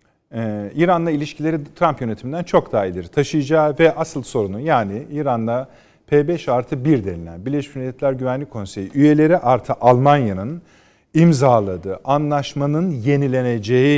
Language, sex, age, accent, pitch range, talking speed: Turkish, male, 40-59, native, 110-150 Hz, 115 wpm